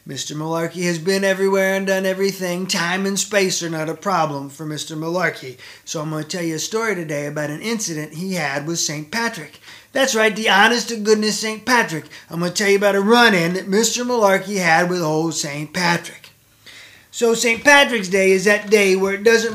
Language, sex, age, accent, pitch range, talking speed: English, male, 20-39, American, 170-210 Hz, 205 wpm